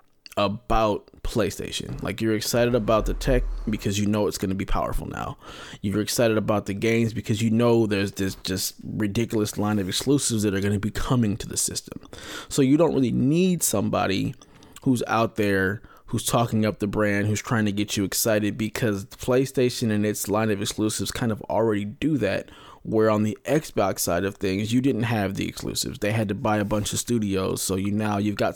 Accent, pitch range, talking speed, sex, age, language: American, 100-115 Hz, 205 wpm, male, 20-39, English